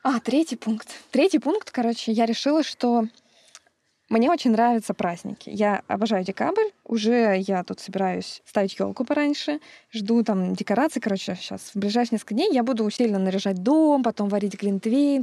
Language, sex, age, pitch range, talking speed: Russian, female, 20-39, 210-260 Hz, 160 wpm